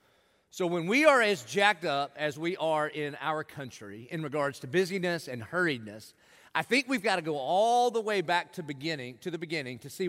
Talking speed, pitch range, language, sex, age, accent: 215 wpm, 150-200 Hz, English, male, 40-59, American